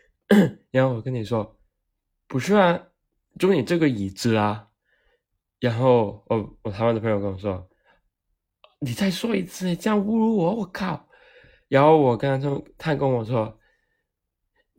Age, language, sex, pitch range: 20-39, Chinese, male, 105-145 Hz